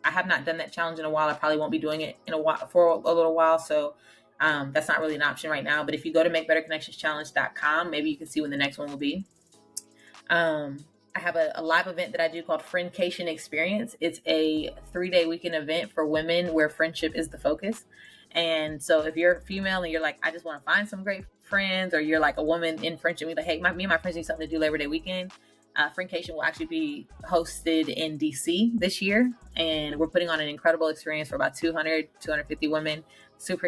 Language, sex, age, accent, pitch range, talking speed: English, female, 20-39, American, 155-180 Hz, 240 wpm